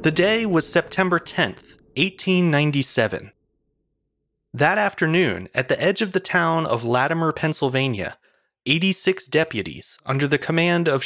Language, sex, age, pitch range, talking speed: English, male, 30-49, 140-185 Hz, 125 wpm